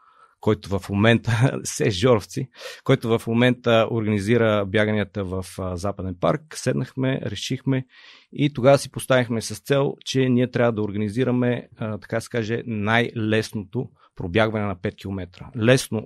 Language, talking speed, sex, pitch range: Bulgarian, 130 wpm, male, 100-125 Hz